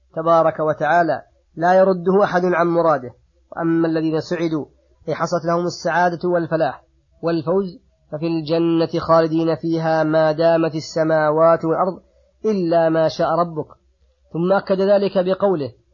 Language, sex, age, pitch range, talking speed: Arabic, female, 30-49, 160-175 Hz, 115 wpm